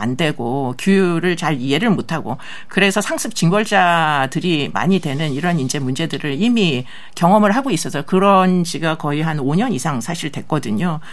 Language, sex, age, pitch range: Korean, male, 50-69, 150-210 Hz